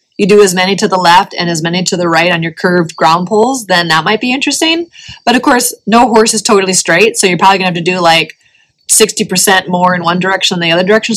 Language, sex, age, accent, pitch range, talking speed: English, female, 30-49, American, 170-215 Hz, 265 wpm